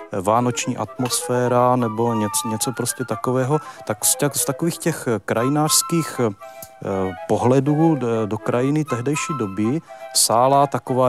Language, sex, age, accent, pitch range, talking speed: Czech, male, 40-59, native, 110-140 Hz, 95 wpm